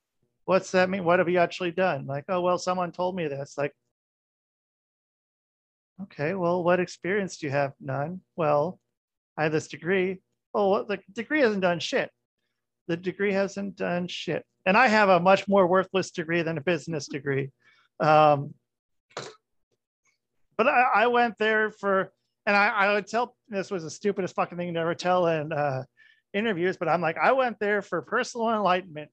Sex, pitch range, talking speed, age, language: male, 155-195 Hz, 175 wpm, 40-59, English